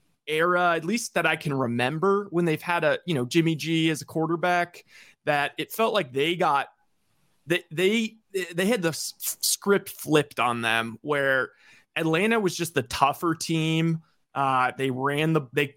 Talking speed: 170 wpm